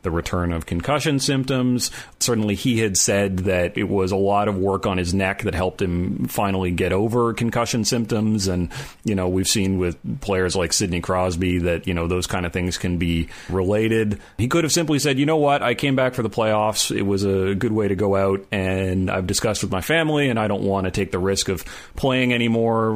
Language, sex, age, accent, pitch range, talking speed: English, male, 30-49, American, 90-110 Hz, 225 wpm